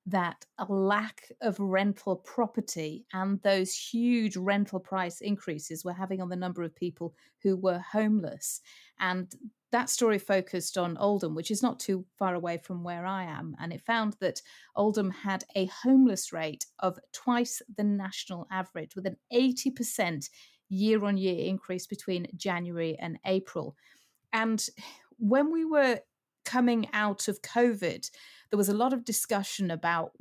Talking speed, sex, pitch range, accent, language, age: 150 wpm, female, 180-220 Hz, British, English, 30-49